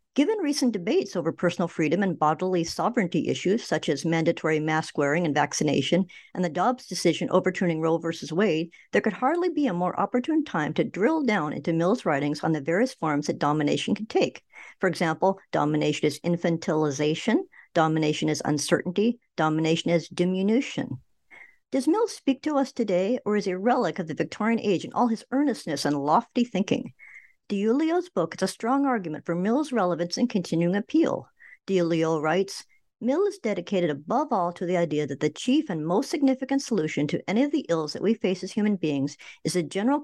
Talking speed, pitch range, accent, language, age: 185 wpm, 165-255 Hz, American, English, 60-79